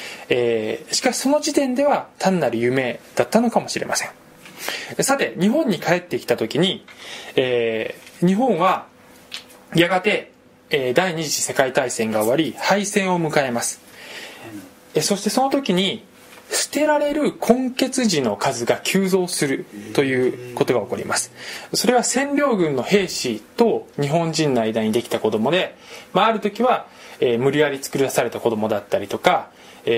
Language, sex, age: Japanese, male, 20-39